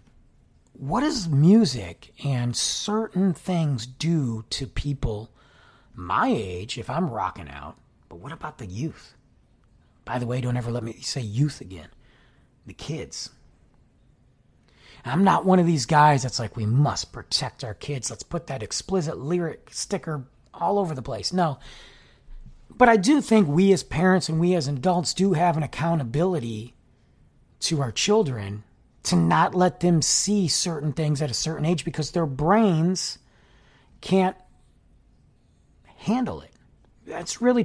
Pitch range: 130-195 Hz